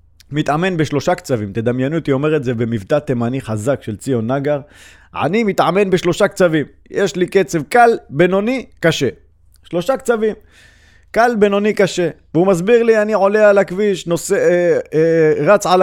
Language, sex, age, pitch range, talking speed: Hebrew, male, 30-49, 120-180 Hz, 155 wpm